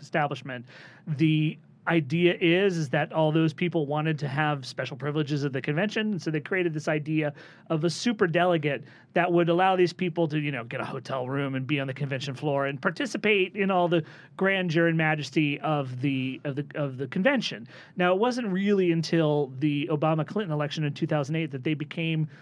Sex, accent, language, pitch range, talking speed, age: male, American, English, 145-175 Hz, 205 wpm, 30-49